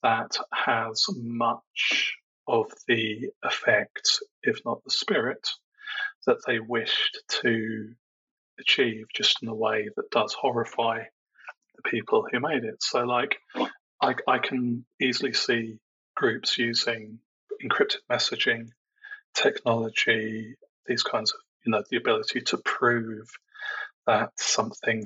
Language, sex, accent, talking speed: English, male, British, 120 wpm